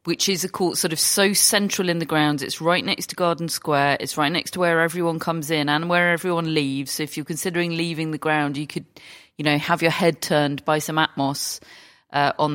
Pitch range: 145-175 Hz